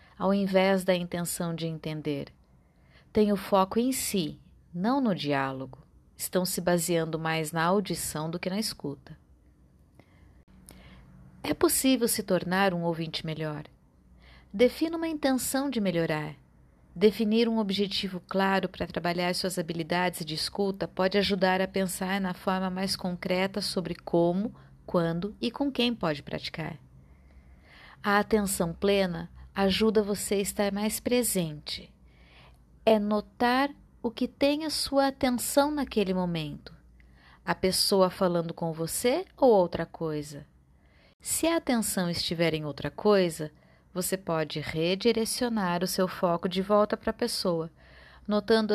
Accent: Brazilian